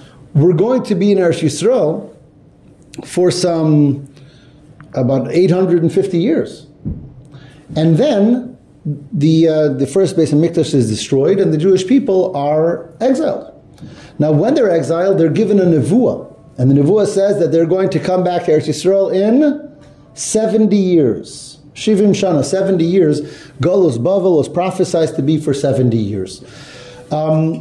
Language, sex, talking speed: English, male, 145 wpm